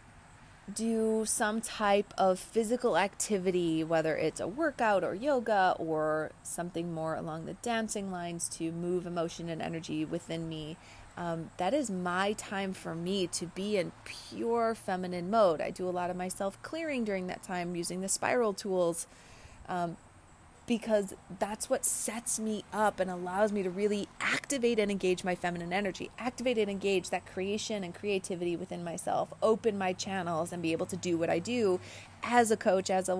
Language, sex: English, female